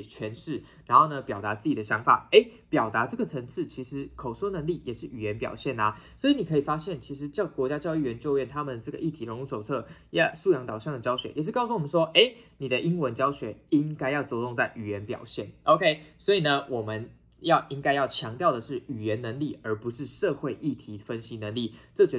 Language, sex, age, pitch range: Chinese, male, 20-39, 120-170 Hz